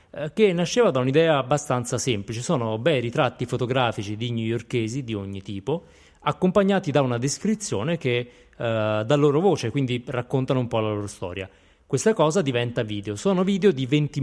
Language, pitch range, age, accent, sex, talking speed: Italian, 115-145 Hz, 20-39, native, male, 165 wpm